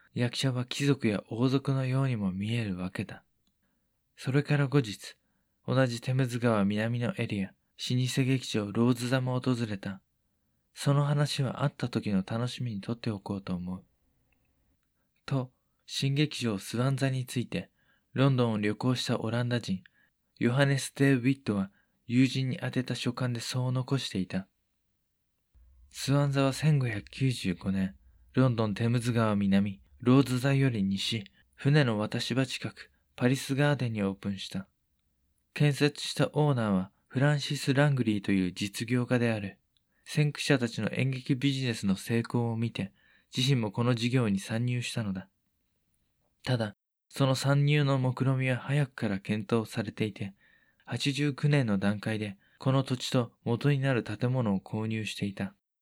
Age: 20-39